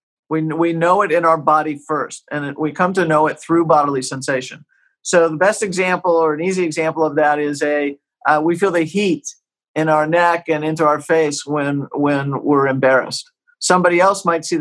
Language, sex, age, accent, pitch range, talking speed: English, male, 50-69, American, 150-195 Hz, 205 wpm